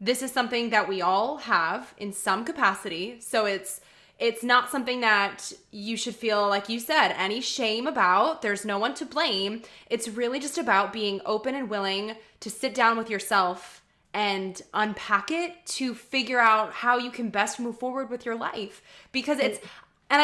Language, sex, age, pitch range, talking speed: English, female, 20-39, 205-255 Hz, 180 wpm